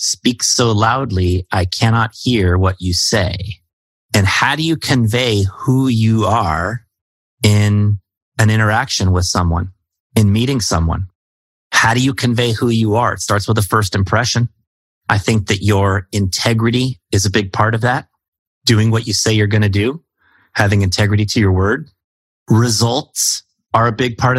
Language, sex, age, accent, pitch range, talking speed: English, male, 30-49, American, 95-115 Hz, 165 wpm